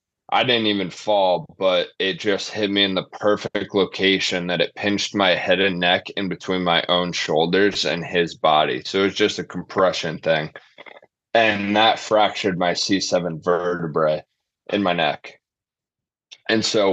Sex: male